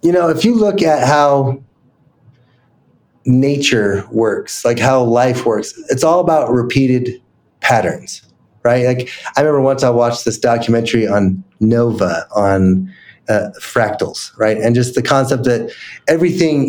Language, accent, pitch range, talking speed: English, American, 115-145 Hz, 140 wpm